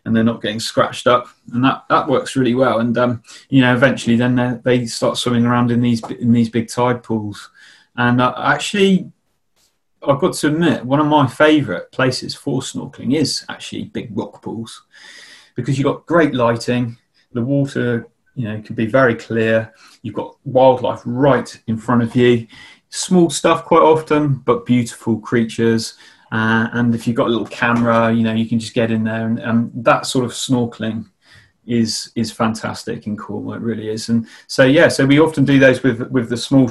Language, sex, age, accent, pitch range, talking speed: English, male, 30-49, British, 115-135 Hz, 195 wpm